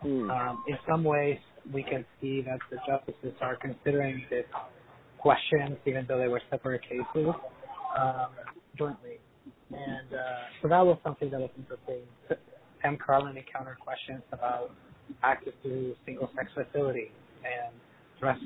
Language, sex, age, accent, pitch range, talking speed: English, male, 30-49, American, 130-150 Hz, 135 wpm